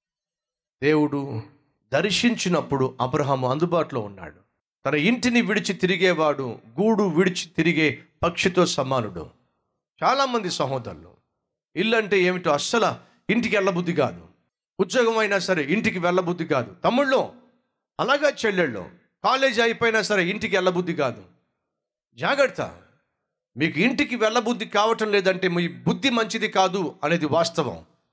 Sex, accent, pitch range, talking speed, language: male, native, 150-220 Hz, 105 wpm, Telugu